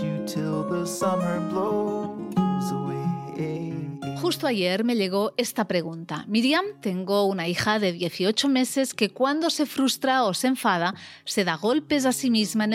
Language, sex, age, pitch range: Spanish, female, 30-49, 180-235 Hz